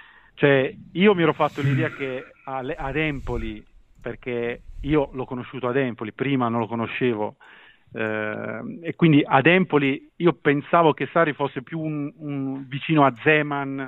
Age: 40-59